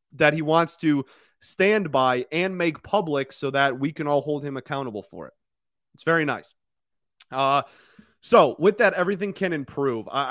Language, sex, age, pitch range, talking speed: English, male, 30-49, 130-165 Hz, 175 wpm